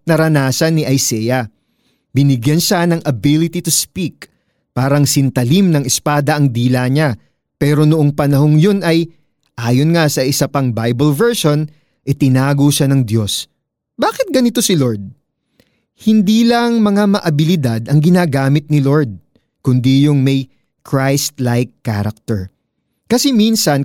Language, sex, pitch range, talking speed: Filipino, male, 130-170 Hz, 130 wpm